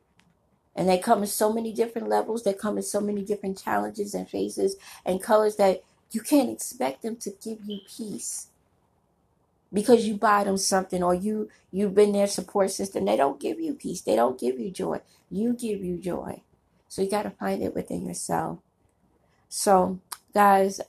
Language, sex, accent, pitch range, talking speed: English, female, American, 180-210 Hz, 185 wpm